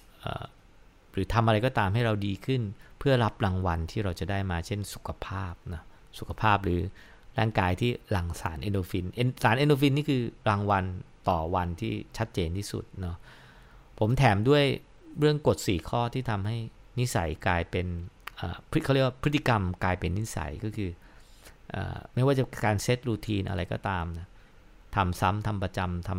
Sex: male